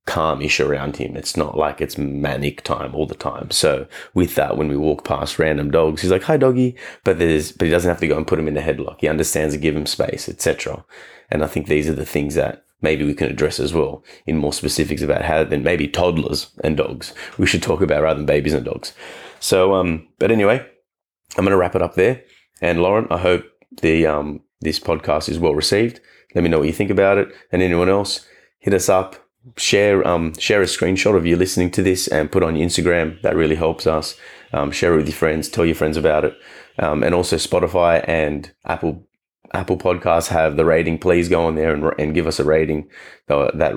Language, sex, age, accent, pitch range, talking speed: English, male, 30-49, Australian, 75-95 Hz, 230 wpm